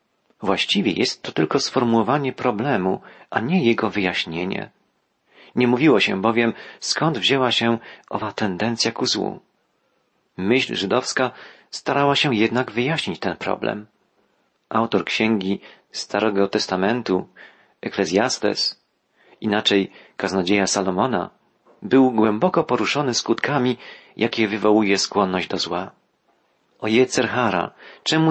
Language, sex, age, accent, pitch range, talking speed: Polish, male, 40-59, native, 105-125 Hz, 105 wpm